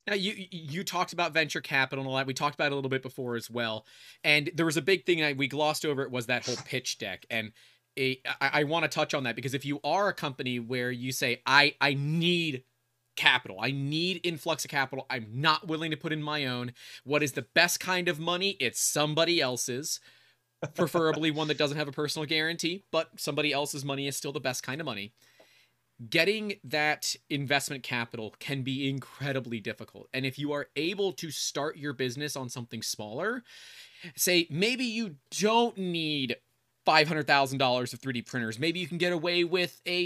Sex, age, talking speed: male, 30-49, 210 wpm